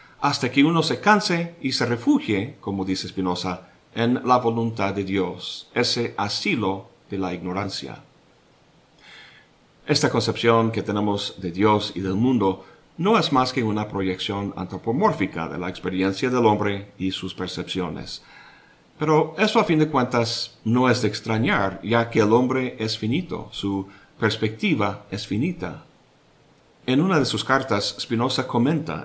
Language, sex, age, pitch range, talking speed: Spanish, male, 50-69, 100-125 Hz, 150 wpm